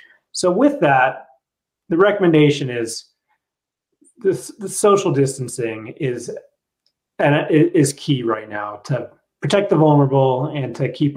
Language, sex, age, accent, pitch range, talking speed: English, male, 30-49, American, 130-160 Hz, 130 wpm